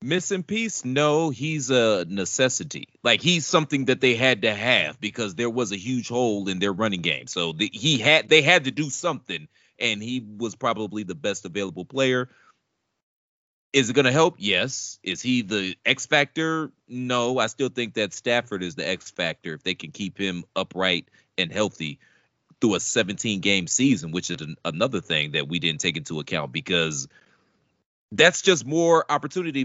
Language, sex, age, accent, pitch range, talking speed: English, male, 30-49, American, 100-130 Hz, 180 wpm